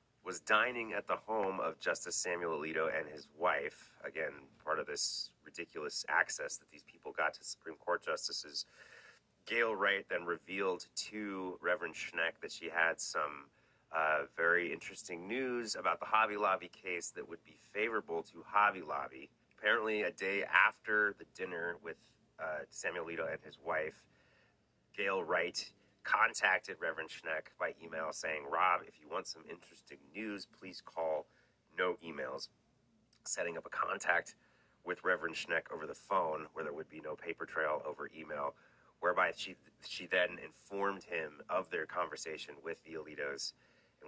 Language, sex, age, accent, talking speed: English, male, 30-49, American, 160 wpm